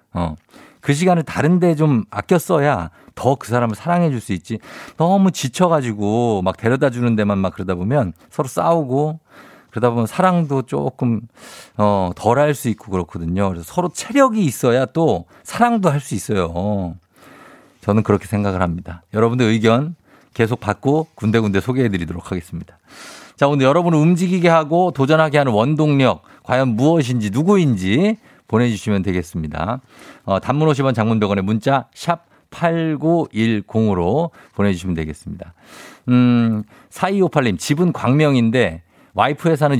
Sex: male